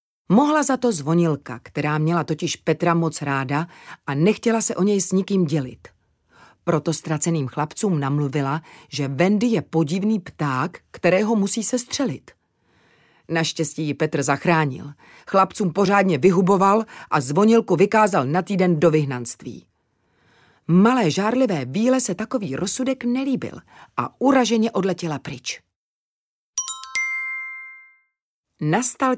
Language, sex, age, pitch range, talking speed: Czech, female, 40-59, 145-215 Hz, 115 wpm